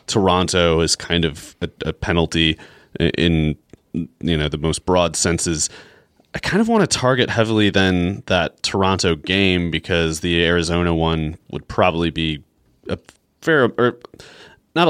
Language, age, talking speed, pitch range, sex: English, 30-49, 140 wpm, 85-110 Hz, male